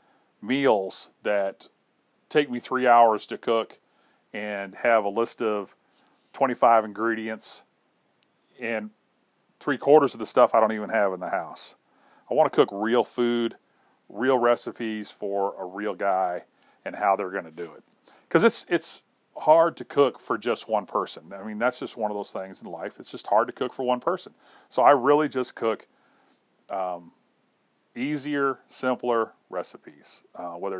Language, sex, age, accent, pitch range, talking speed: English, male, 40-59, American, 105-120 Hz, 170 wpm